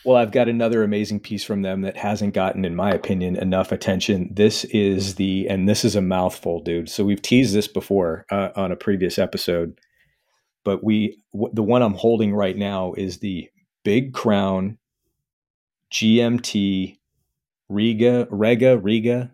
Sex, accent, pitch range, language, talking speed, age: male, American, 95-110 Hz, English, 160 wpm, 40-59